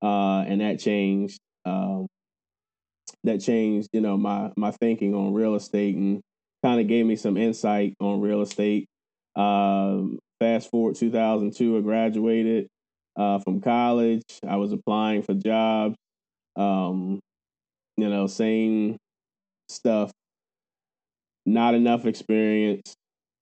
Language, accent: English, American